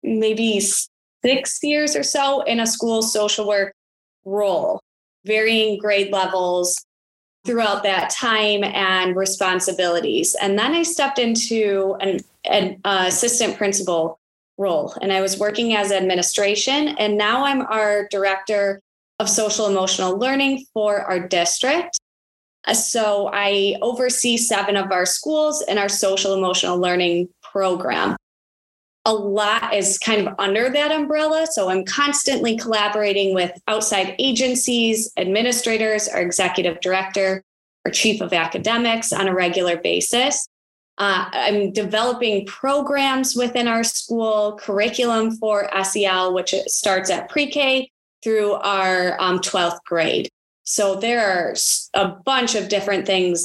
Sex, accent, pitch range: female, American, 190-230 Hz